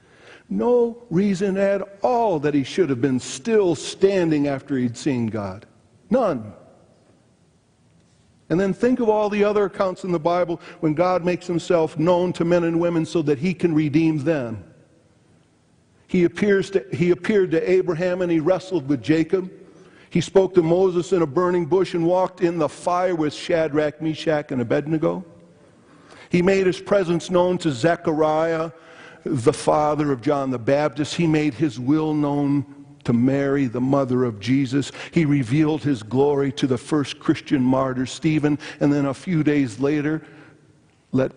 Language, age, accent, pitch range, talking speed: English, 50-69, American, 130-175 Hz, 165 wpm